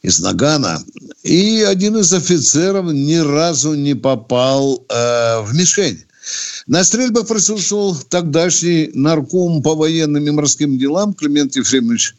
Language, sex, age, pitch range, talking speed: Russian, male, 60-79, 135-195 Hz, 125 wpm